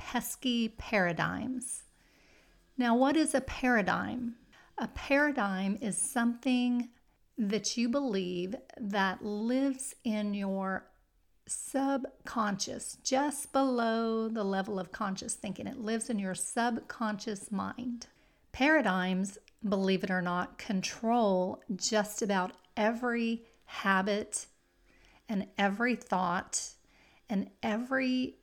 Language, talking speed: English, 100 wpm